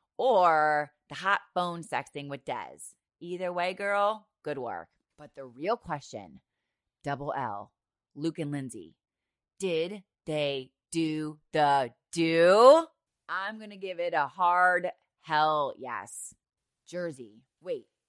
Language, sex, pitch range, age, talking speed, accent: English, female, 145-200 Hz, 30-49, 125 wpm, American